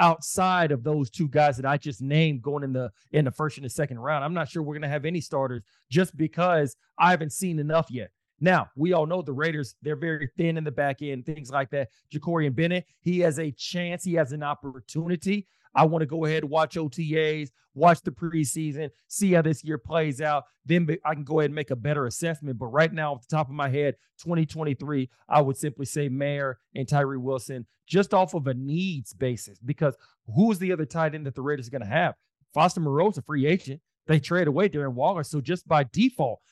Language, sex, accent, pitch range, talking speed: English, male, American, 140-165 Hz, 230 wpm